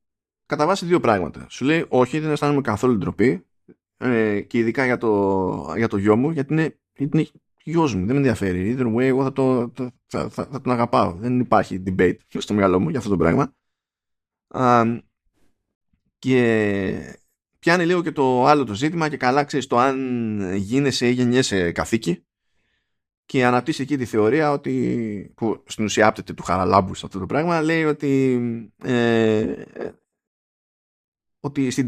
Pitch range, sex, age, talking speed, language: 100-145 Hz, male, 20-39, 165 wpm, Greek